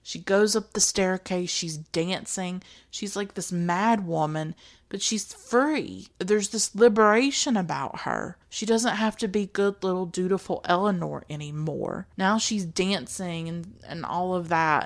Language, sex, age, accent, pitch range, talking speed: English, female, 30-49, American, 160-195 Hz, 155 wpm